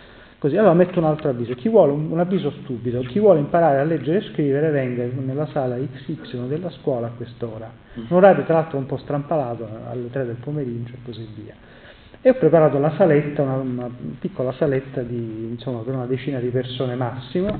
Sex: male